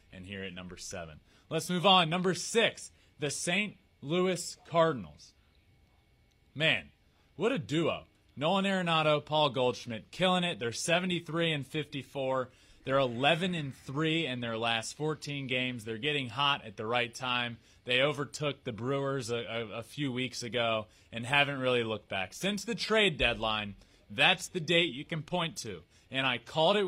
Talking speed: 160 wpm